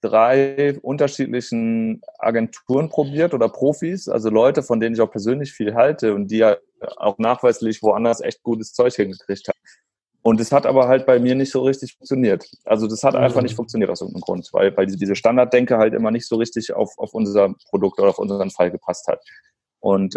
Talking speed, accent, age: 200 wpm, German, 30-49